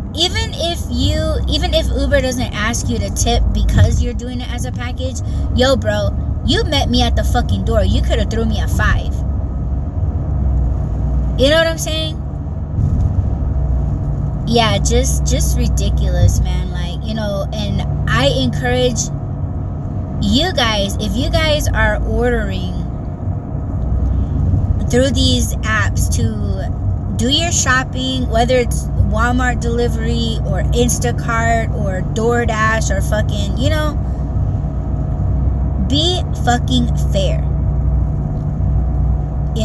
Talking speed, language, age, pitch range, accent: 120 wpm, English, 20-39, 75-95 Hz, American